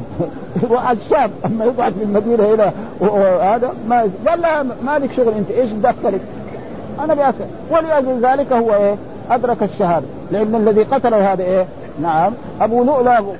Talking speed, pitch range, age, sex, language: 130 wpm, 190-245 Hz, 60-79, male, Arabic